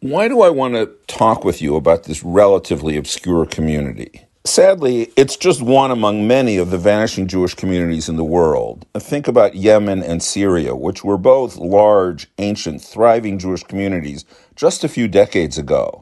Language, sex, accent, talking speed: English, male, American, 170 wpm